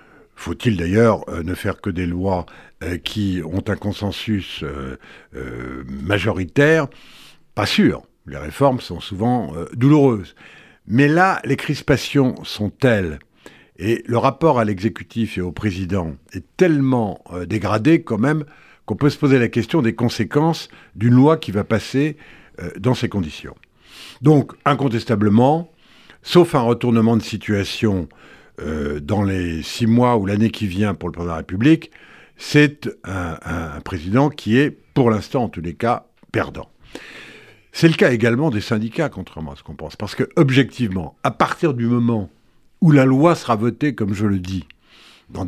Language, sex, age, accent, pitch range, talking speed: French, male, 70-89, French, 95-140 Hz, 155 wpm